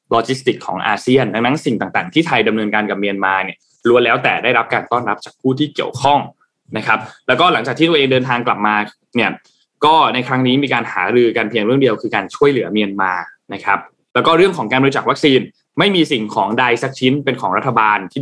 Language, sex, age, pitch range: Thai, male, 20-39, 110-145 Hz